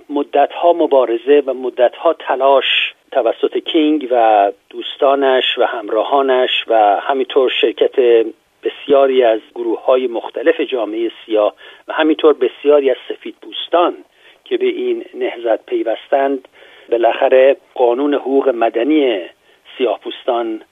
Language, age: Persian, 50-69